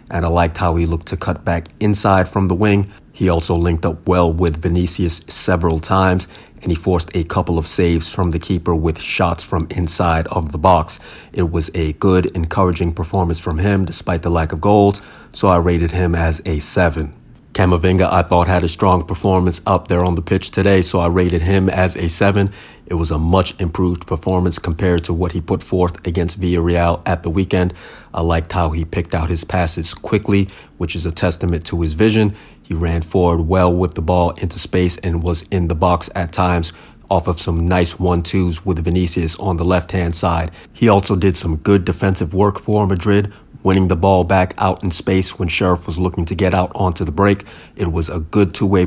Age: 30-49